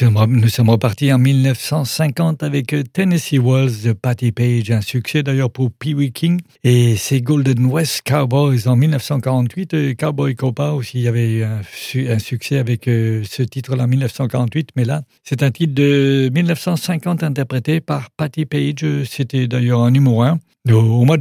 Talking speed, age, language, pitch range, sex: 155 wpm, 60-79, English, 120-145 Hz, male